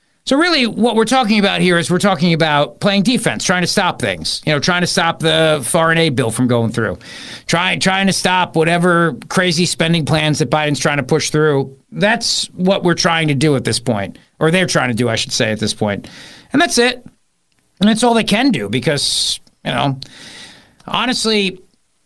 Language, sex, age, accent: English, male, 50-69, American